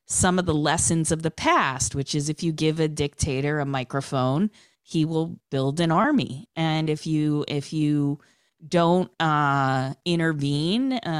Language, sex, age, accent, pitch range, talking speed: English, female, 30-49, American, 125-160 Hz, 160 wpm